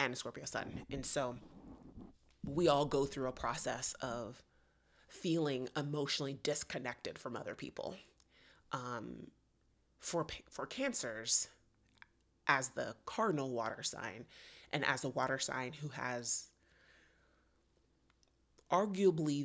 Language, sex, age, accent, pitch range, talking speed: English, female, 30-49, American, 100-145 Hz, 110 wpm